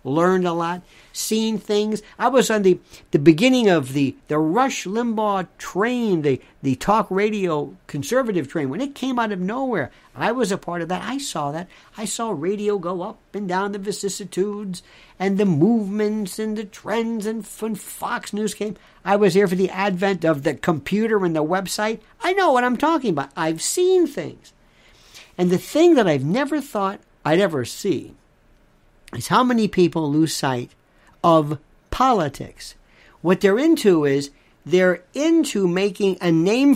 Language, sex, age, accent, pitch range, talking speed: English, male, 50-69, American, 170-220 Hz, 170 wpm